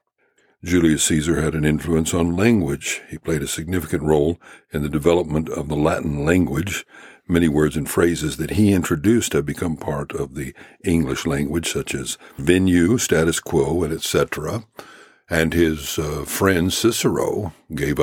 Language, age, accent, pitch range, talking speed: English, 60-79, American, 75-95 Hz, 155 wpm